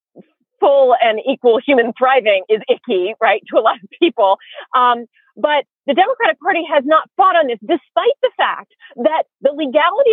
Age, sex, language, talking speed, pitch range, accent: 40-59, female, English, 170 wpm, 255-330 Hz, American